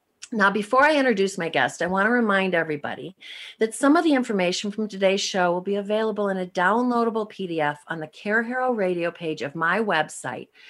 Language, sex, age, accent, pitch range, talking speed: English, female, 50-69, American, 165-220 Hz, 195 wpm